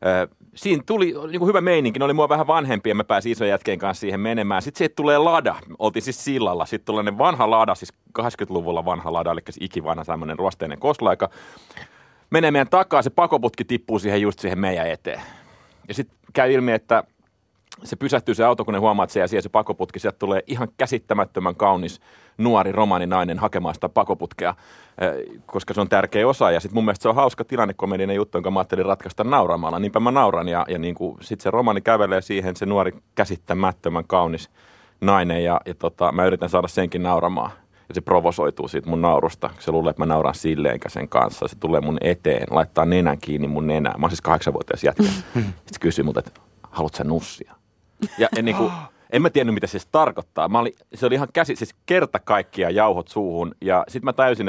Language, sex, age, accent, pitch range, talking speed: Finnish, male, 30-49, native, 85-120 Hz, 200 wpm